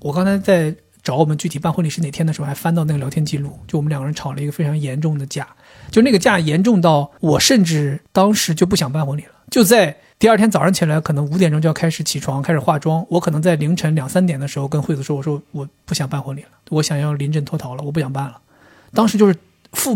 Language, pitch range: Chinese, 145-180 Hz